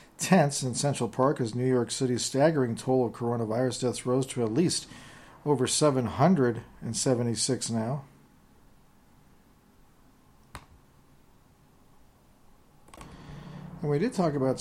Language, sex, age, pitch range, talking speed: English, male, 40-59, 120-140 Hz, 105 wpm